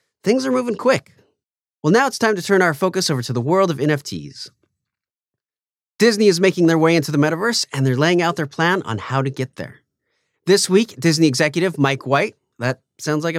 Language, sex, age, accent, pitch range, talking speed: English, male, 30-49, American, 135-185 Hz, 200 wpm